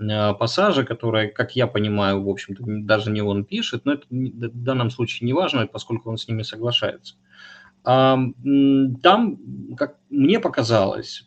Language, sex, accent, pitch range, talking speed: Ukrainian, male, native, 110-145 Hz, 140 wpm